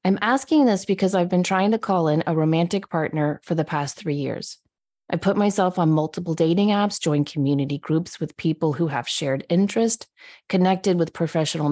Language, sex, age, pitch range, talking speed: English, female, 30-49, 150-190 Hz, 190 wpm